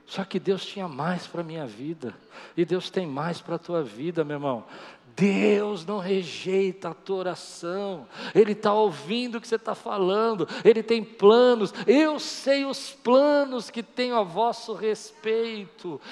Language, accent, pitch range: Portuguese, Brazilian, 145-215 Hz